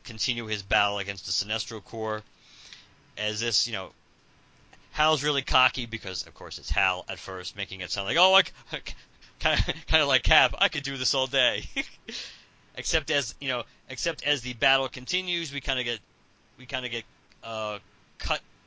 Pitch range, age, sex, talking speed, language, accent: 100-125 Hz, 30-49, male, 175 wpm, English, American